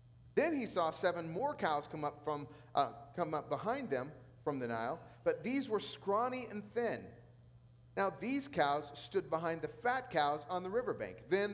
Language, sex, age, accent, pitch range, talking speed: English, male, 40-59, American, 125-205 Hz, 165 wpm